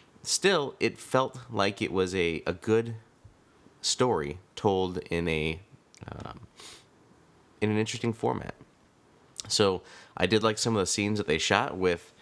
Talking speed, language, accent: 145 wpm, English, American